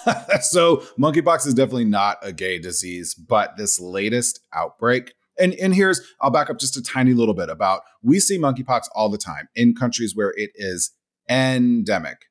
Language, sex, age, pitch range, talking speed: English, male, 30-49, 110-145 Hz, 175 wpm